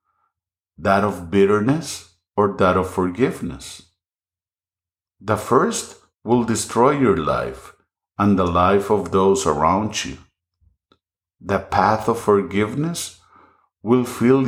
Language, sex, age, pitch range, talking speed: English, male, 50-69, 85-100 Hz, 110 wpm